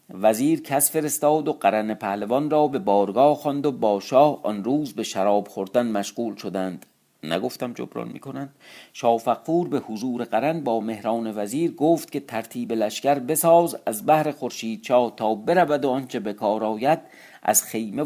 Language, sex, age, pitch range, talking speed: Persian, male, 50-69, 110-145 Hz, 155 wpm